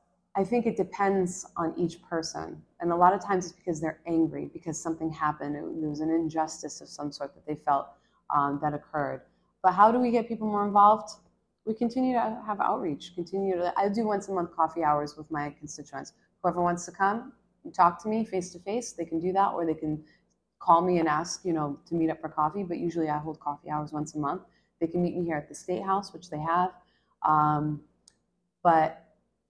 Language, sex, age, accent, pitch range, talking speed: English, female, 20-39, American, 150-185 Hz, 220 wpm